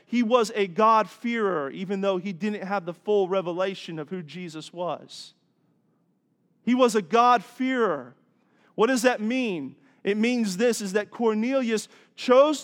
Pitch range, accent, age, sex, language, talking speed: 200-245 Hz, American, 40-59, male, English, 145 wpm